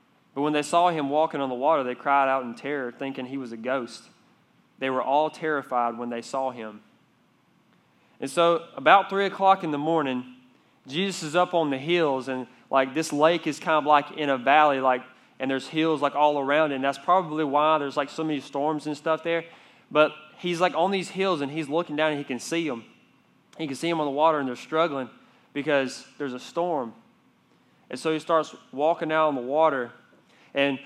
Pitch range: 140-170 Hz